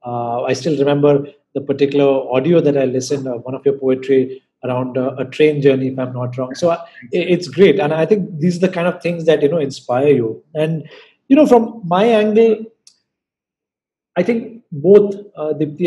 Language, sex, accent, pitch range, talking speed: English, male, Indian, 140-185 Hz, 200 wpm